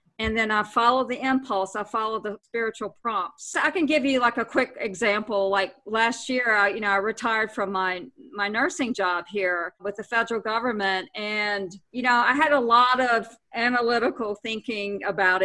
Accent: American